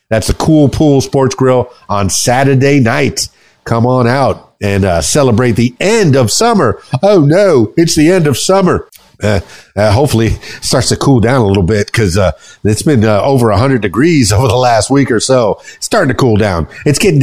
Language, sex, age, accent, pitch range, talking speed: English, male, 50-69, American, 110-140 Hz, 200 wpm